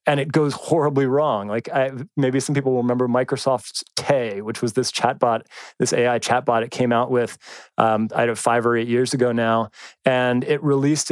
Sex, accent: male, American